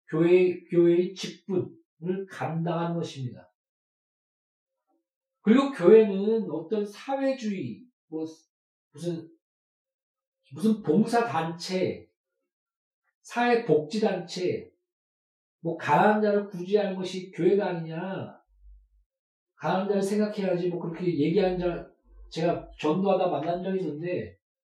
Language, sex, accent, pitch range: Korean, male, native, 180-250 Hz